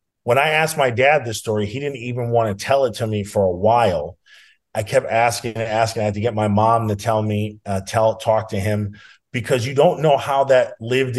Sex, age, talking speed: male, 30-49, 235 wpm